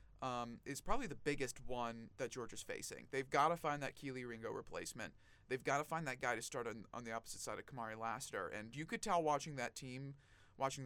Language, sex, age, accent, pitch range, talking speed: English, male, 30-49, American, 120-155 Hz, 225 wpm